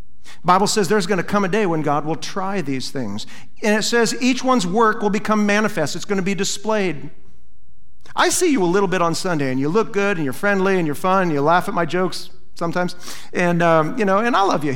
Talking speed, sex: 240 wpm, male